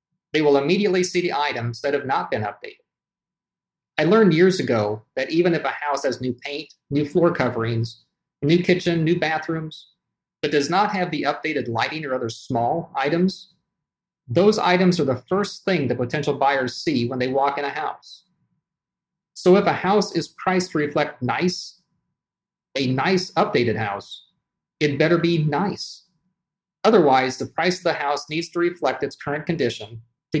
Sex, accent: male, American